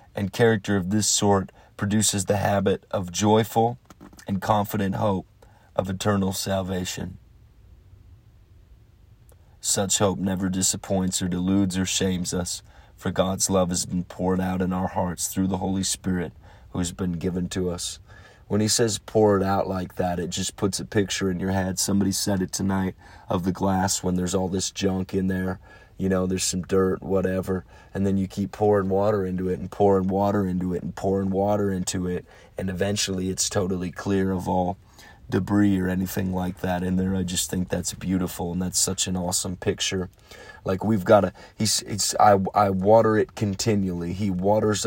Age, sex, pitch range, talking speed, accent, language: 30-49, male, 90-100 Hz, 185 wpm, American, English